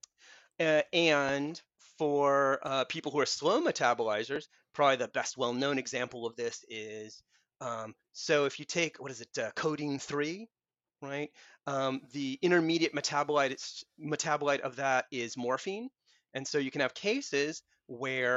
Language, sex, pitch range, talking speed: English, male, 130-160 Hz, 145 wpm